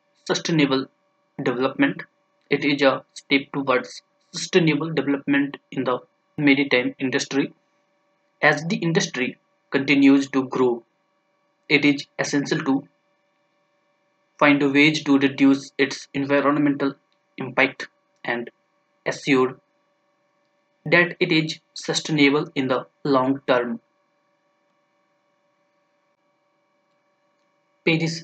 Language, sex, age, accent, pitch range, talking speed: English, male, 20-39, Indian, 135-190 Hz, 90 wpm